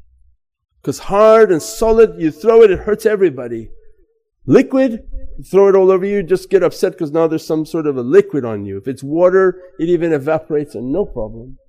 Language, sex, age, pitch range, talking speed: English, male, 50-69, 120-200 Hz, 195 wpm